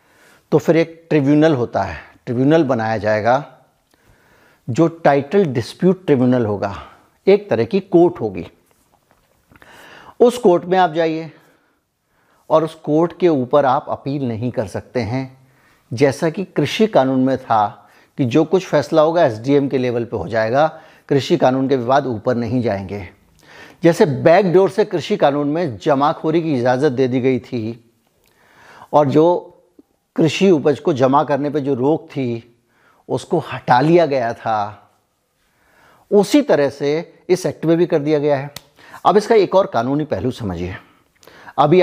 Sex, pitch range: male, 130-175 Hz